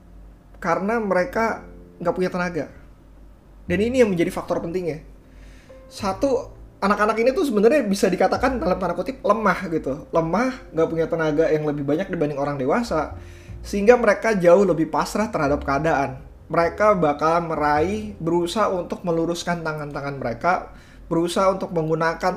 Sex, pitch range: male, 140-195 Hz